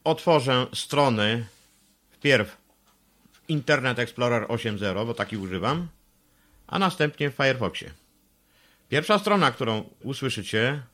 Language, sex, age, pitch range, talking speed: Polish, male, 50-69, 105-135 Hz, 100 wpm